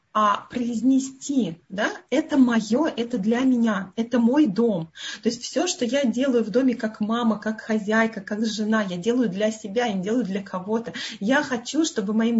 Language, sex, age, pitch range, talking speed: Russian, female, 20-39, 220-260 Hz, 180 wpm